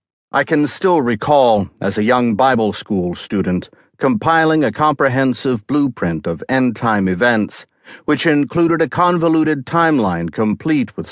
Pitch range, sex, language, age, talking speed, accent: 105-150 Hz, male, English, 50-69, 130 wpm, American